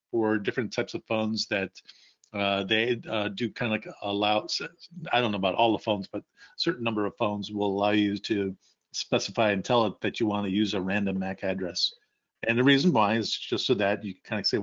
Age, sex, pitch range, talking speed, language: 50-69, male, 100-115 Hz, 230 wpm, English